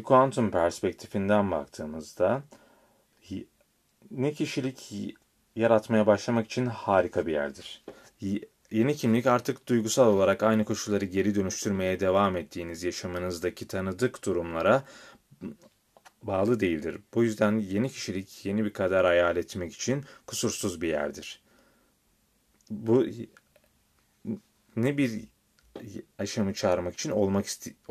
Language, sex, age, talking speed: Turkish, male, 30-49, 105 wpm